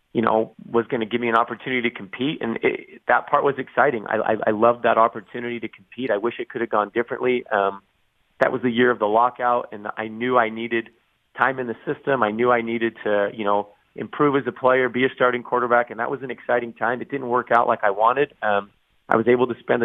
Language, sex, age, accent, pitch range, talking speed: English, male, 30-49, American, 115-125 Hz, 250 wpm